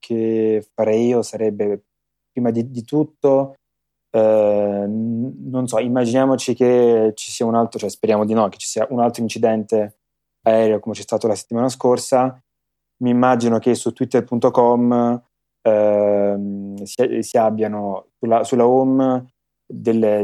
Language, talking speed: Italian, 140 wpm